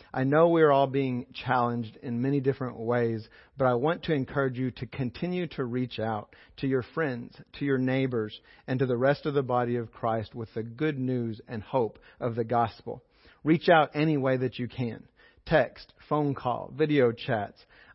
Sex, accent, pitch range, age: male, American, 115-140 Hz, 40-59